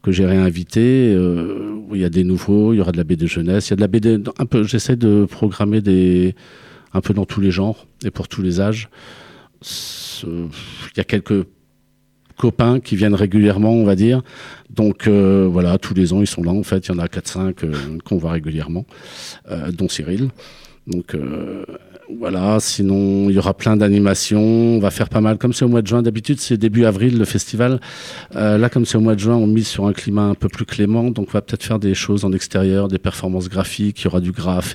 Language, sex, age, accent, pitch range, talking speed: French, male, 50-69, French, 95-110 Hz, 230 wpm